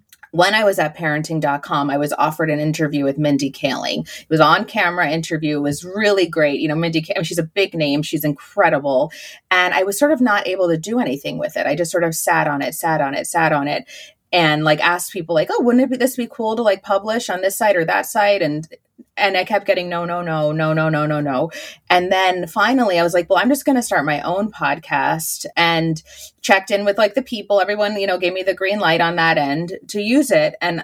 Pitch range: 160-225 Hz